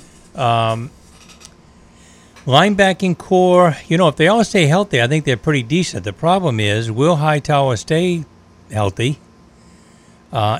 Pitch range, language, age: 115-145 Hz, English, 60-79